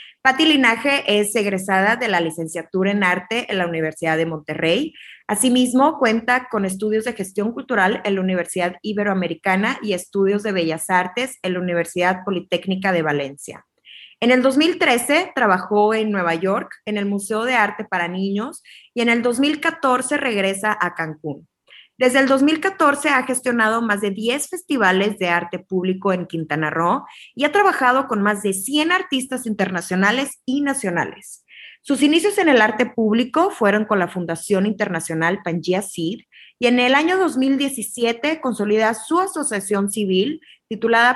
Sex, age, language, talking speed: female, 20-39, Spanish, 155 wpm